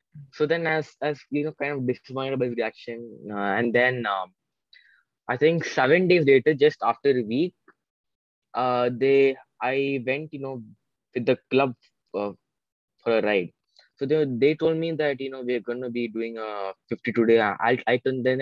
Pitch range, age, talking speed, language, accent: 110-135 Hz, 20-39, 180 wpm, English, Indian